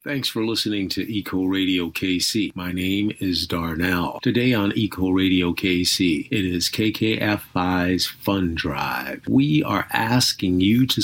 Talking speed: 140 wpm